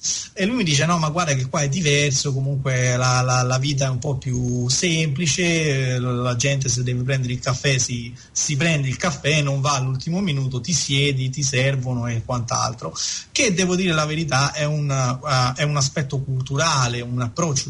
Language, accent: Italian, native